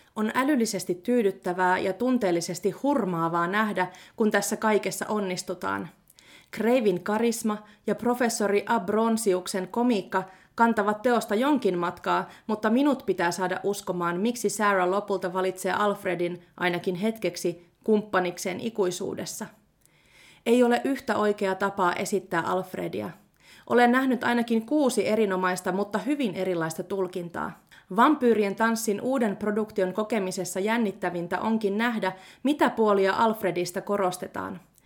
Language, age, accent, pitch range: Finnish, 30-49, native, 185-225 Hz